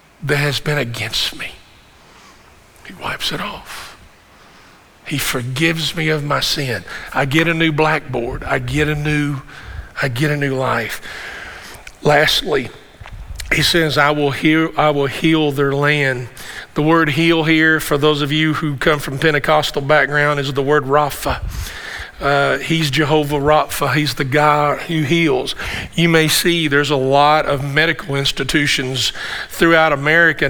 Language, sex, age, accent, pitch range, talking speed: English, male, 50-69, American, 140-160 Hz, 150 wpm